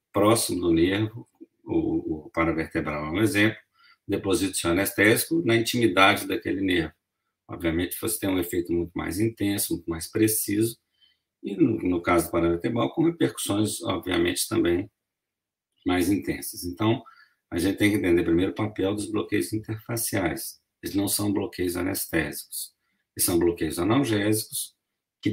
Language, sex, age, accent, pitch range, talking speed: Portuguese, male, 50-69, Brazilian, 85-115 Hz, 135 wpm